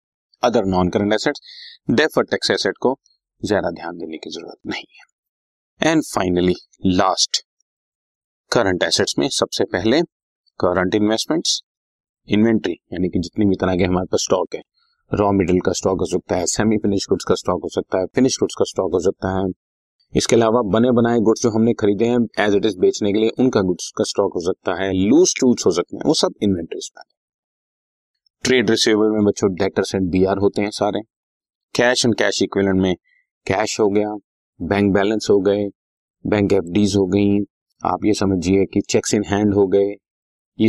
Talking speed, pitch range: 140 wpm, 95-110 Hz